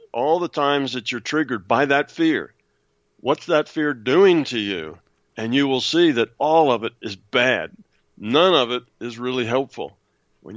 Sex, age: male, 60-79